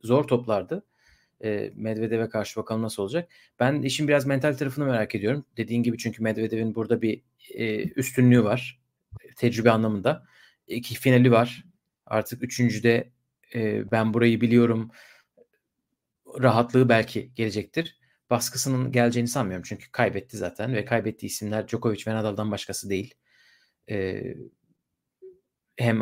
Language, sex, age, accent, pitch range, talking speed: Turkish, male, 40-59, native, 110-130 Hz, 120 wpm